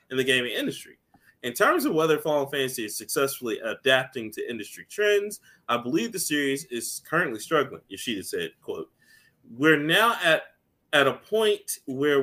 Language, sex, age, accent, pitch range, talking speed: English, male, 20-39, American, 135-220 Hz, 160 wpm